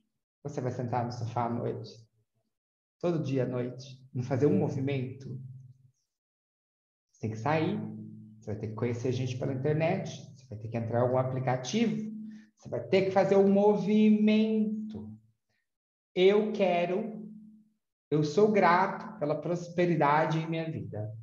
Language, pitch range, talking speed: Portuguese, 130-180 Hz, 150 wpm